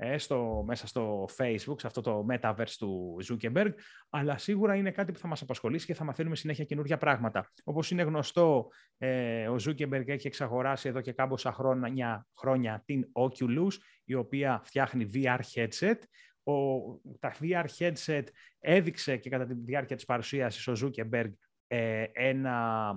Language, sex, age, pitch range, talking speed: Greek, male, 30-49, 120-155 Hz, 155 wpm